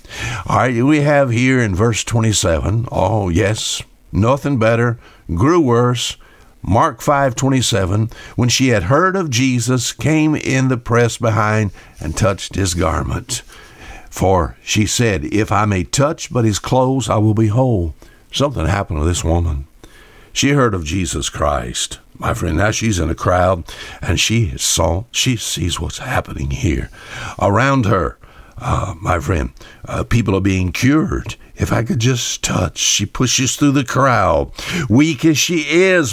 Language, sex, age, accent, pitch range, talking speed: English, male, 60-79, American, 95-135 Hz, 160 wpm